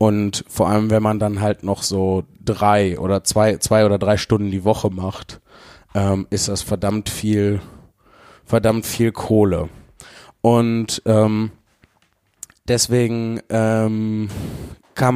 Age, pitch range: 20-39, 100-120 Hz